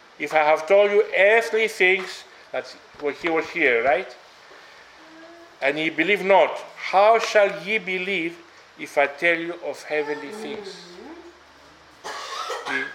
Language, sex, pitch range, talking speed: English, male, 160-220 Hz, 135 wpm